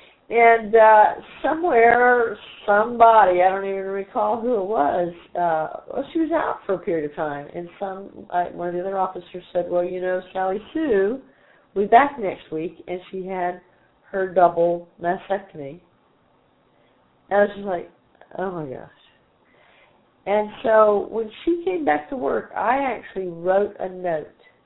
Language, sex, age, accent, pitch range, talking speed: English, female, 50-69, American, 160-210 Hz, 165 wpm